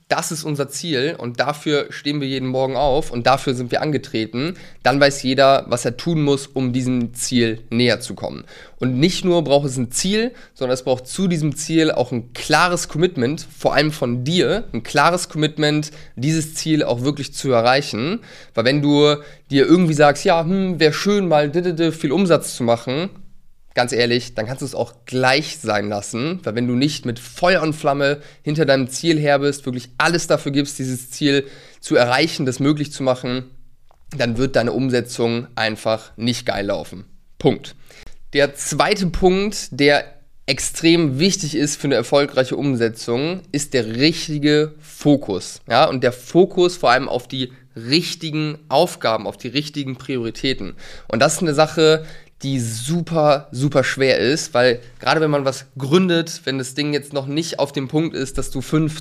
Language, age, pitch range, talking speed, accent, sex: German, 20-39, 130-155 Hz, 180 wpm, German, male